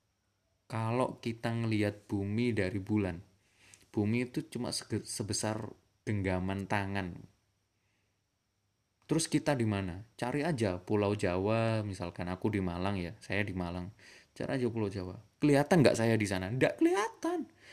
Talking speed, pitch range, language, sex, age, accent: 135 wpm, 100-130 Hz, Indonesian, male, 20-39, native